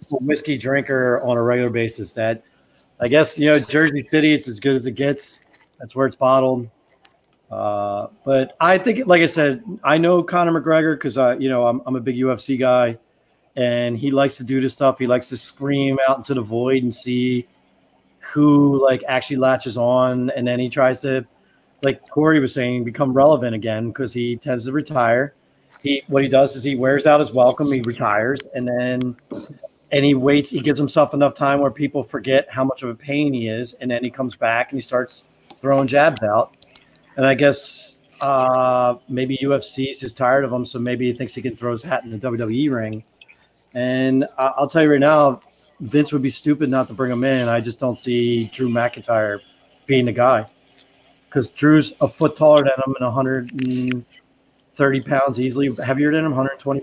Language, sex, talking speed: English, male, 200 wpm